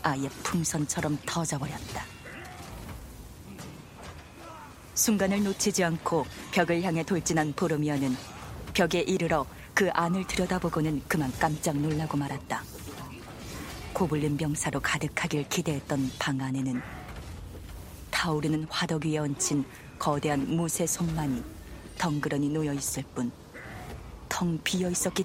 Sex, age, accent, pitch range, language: female, 40-59, native, 140-170 Hz, Korean